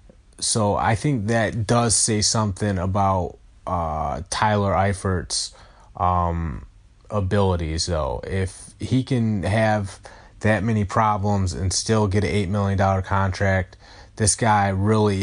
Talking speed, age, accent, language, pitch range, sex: 120 wpm, 20-39, American, English, 95-105 Hz, male